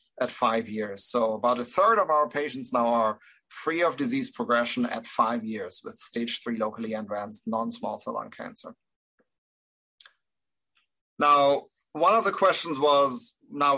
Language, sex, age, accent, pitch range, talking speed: English, male, 30-49, German, 120-155 Hz, 155 wpm